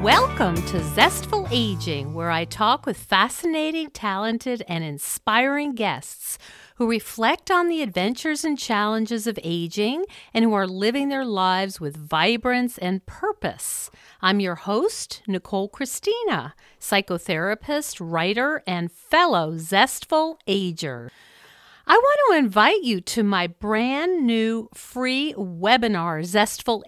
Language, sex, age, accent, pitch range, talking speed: English, female, 50-69, American, 180-265 Hz, 125 wpm